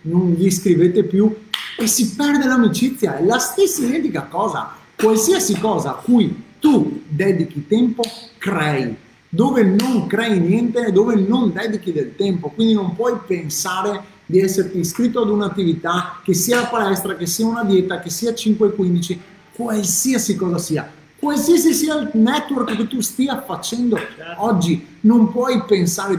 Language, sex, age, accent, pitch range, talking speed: Italian, male, 30-49, native, 165-220 Hz, 150 wpm